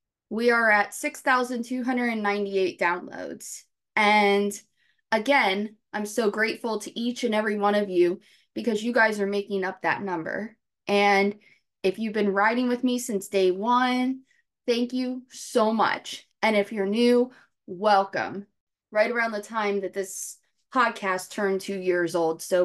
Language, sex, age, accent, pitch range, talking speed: English, female, 20-39, American, 190-230 Hz, 150 wpm